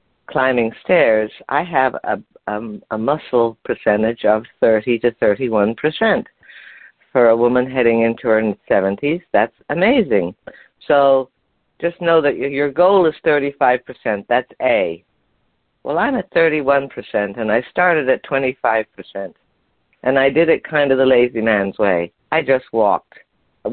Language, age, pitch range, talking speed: English, 50-69, 110-130 Hz, 145 wpm